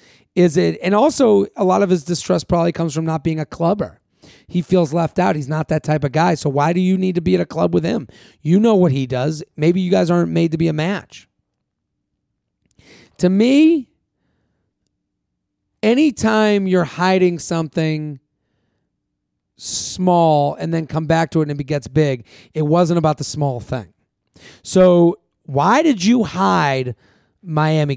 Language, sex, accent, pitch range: English, male, American, 150-195 Hz